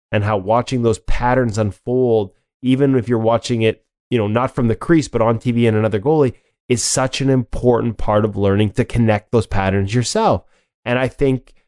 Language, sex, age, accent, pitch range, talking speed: English, male, 20-39, American, 110-130 Hz, 195 wpm